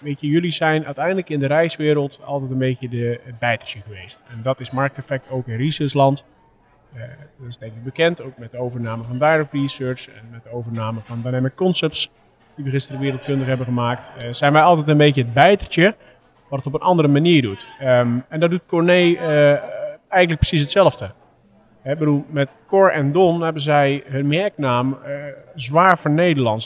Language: Dutch